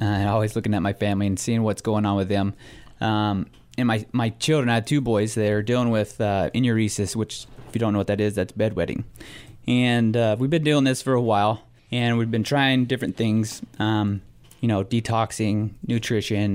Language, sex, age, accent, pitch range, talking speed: English, male, 20-39, American, 105-125 Hz, 210 wpm